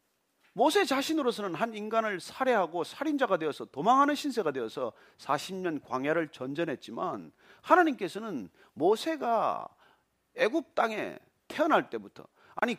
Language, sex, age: Korean, male, 40-59